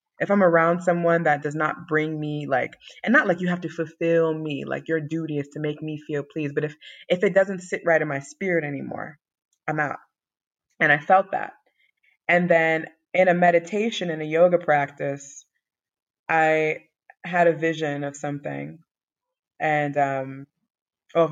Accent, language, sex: American, French, female